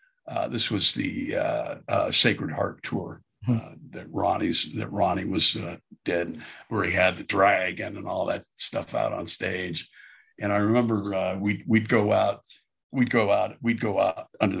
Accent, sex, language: American, male, English